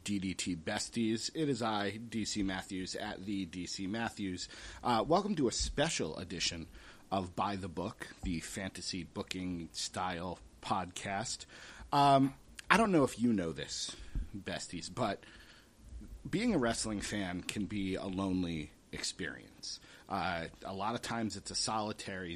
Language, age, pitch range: English, 30-49, 90-115 Hz